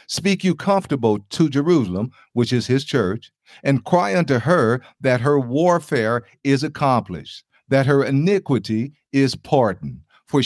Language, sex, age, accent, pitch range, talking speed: English, male, 50-69, American, 105-145 Hz, 140 wpm